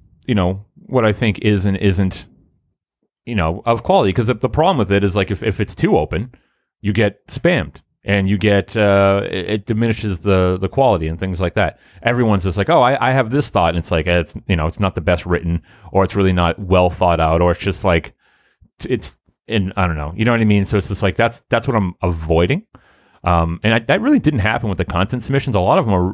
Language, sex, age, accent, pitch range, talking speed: English, male, 30-49, American, 85-105 Hz, 245 wpm